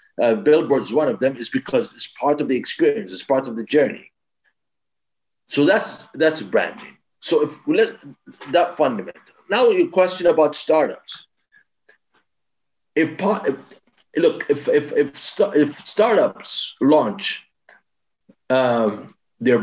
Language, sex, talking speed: English, male, 135 wpm